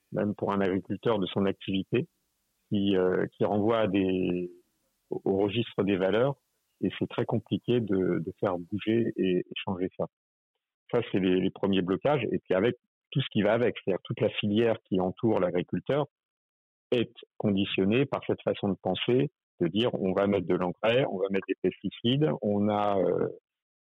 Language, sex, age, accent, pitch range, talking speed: French, male, 50-69, French, 95-110 Hz, 180 wpm